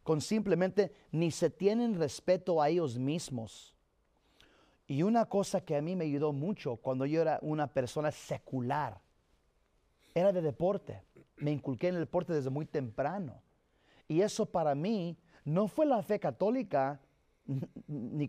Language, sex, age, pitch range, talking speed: Spanish, male, 40-59, 140-185 Hz, 150 wpm